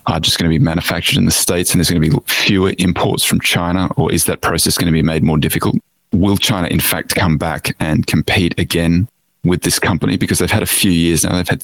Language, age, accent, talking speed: English, 30-49, Australian, 255 wpm